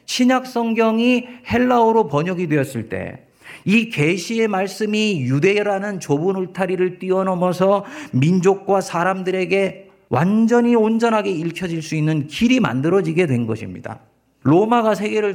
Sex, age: male, 40-59